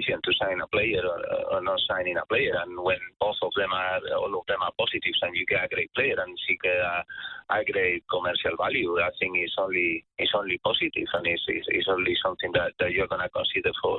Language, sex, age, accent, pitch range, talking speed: English, male, 30-49, Spanish, 335-475 Hz, 230 wpm